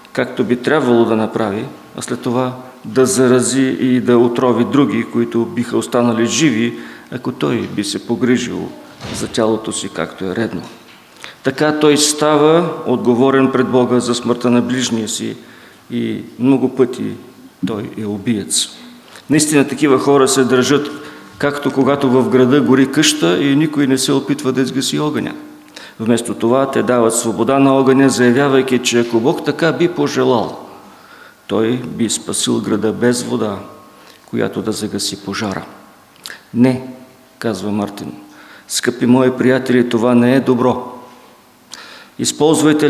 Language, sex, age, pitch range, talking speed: English, male, 50-69, 115-135 Hz, 140 wpm